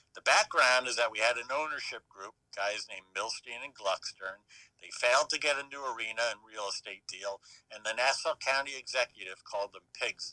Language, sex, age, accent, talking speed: English, male, 60-79, American, 190 wpm